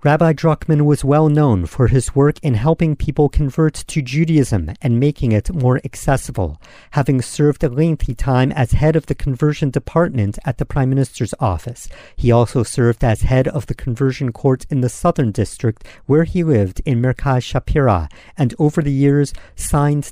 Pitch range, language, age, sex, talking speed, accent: 115-155 Hz, English, 50-69, male, 175 wpm, American